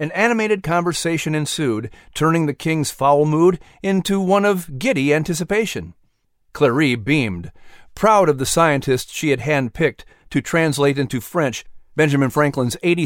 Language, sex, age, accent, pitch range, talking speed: English, male, 50-69, American, 130-180 Hz, 135 wpm